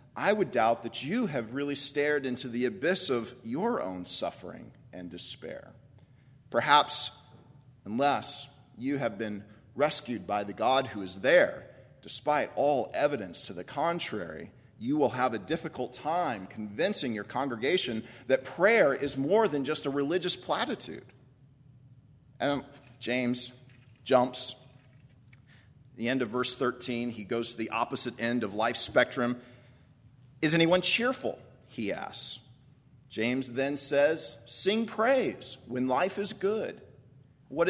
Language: English